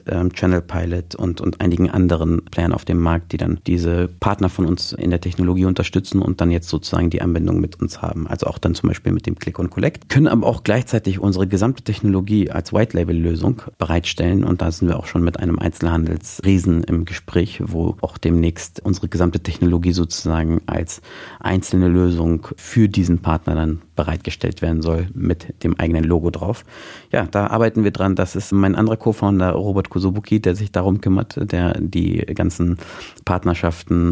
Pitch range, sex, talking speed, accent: 85-95 Hz, male, 180 wpm, German